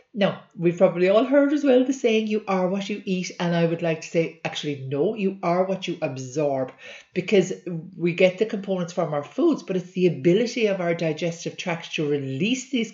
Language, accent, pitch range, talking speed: English, Irish, 160-195 Hz, 215 wpm